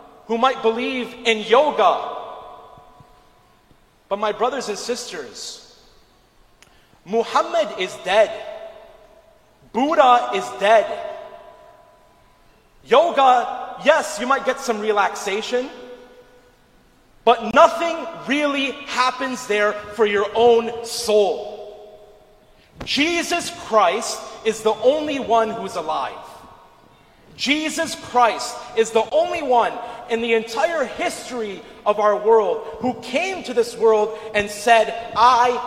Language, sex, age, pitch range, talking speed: English, male, 30-49, 210-255 Hz, 105 wpm